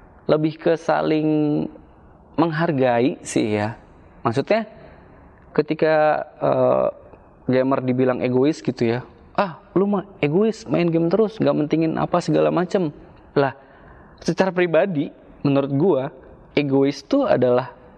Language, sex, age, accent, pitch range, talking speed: Indonesian, male, 20-39, native, 110-155 Hz, 115 wpm